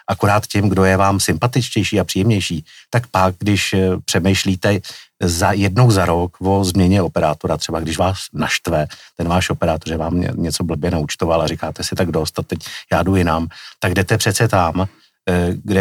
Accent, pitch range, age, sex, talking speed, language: native, 85-100 Hz, 50-69, male, 170 wpm, Czech